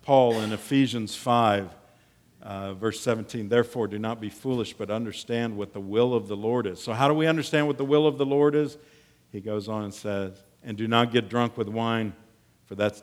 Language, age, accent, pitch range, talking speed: English, 50-69, American, 95-140 Hz, 215 wpm